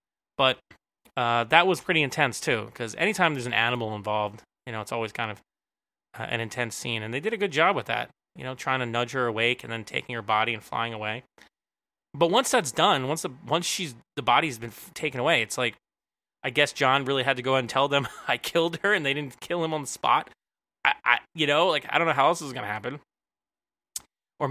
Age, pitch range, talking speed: 20-39, 120-155 Hz, 240 wpm